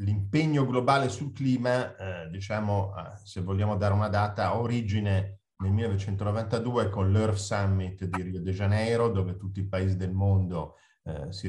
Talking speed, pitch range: 160 wpm, 95-110 Hz